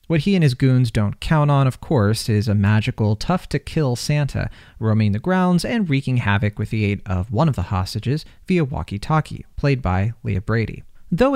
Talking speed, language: 190 wpm, English